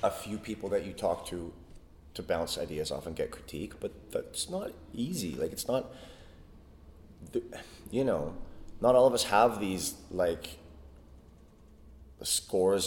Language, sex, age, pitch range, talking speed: English, male, 30-49, 80-100 Hz, 145 wpm